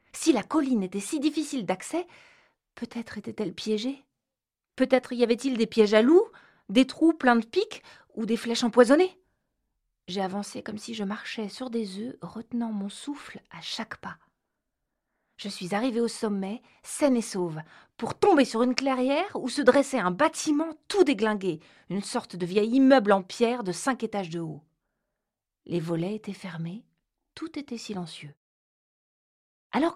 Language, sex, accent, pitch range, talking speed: French, female, French, 195-275 Hz, 160 wpm